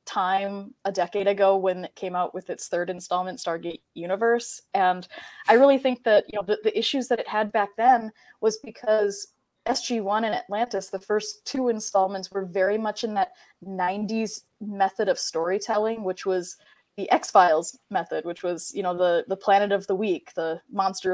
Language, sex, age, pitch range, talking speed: English, female, 20-39, 190-225 Hz, 185 wpm